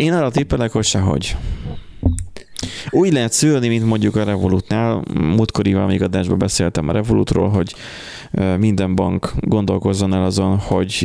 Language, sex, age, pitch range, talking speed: Hungarian, male, 20-39, 90-105 Hz, 135 wpm